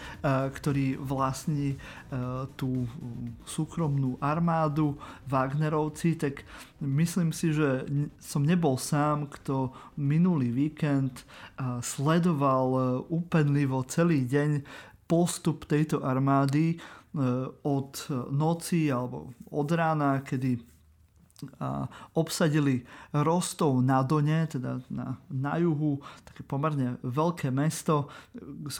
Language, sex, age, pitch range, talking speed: Slovak, male, 30-49, 130-160 Hz, 90 wpm